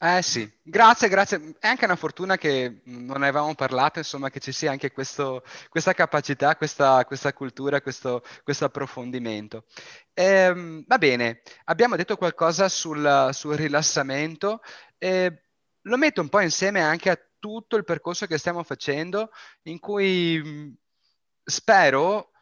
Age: 30-49